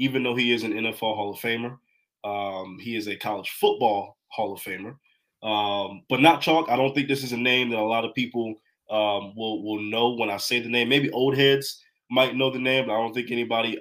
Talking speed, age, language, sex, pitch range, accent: 240 wpm, 20-39, English, male, 105-125 Hz, American